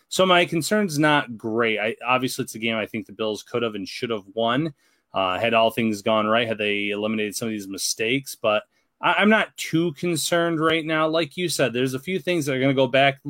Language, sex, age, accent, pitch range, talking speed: English, male, 30-49, American, 115-150 Hz, 245 wpm